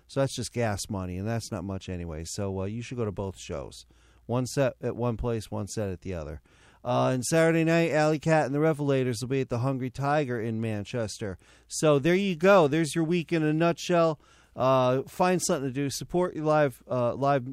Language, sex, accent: English, male, American